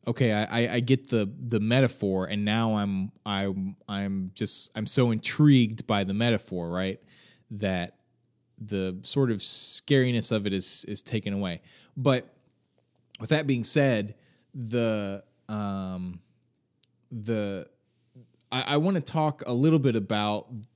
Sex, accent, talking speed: male, American, 140 wpm